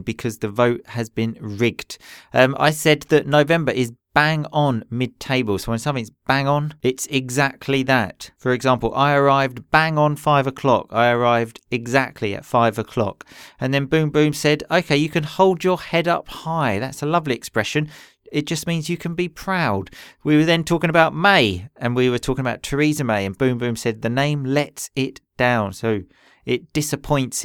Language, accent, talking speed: English, British, 190 wpm